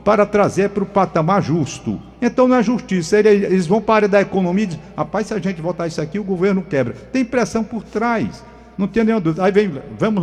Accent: Brazilian